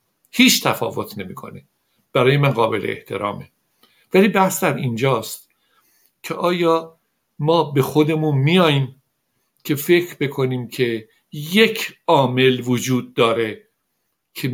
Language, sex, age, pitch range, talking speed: Persian, male, 60-79, 120-155 Hz, 105 wpm